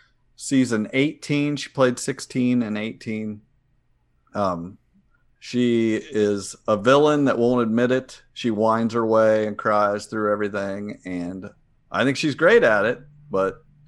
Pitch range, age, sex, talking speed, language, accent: 100-130 Hz, 50-69, male, 140 wpm, English, American